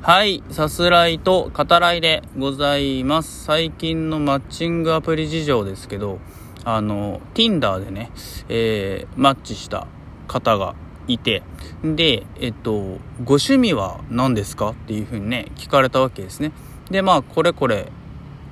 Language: Japanese